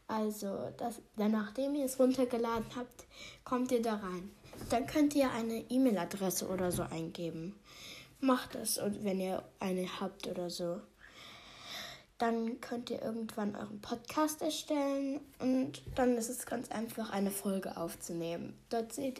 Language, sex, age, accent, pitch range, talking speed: German, female, 20-39, German, 205-255 Hz, 140 wpm